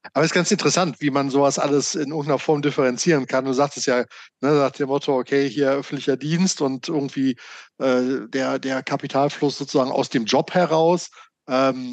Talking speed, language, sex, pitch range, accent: 185 wpm, German, male, 130-165 Hz, German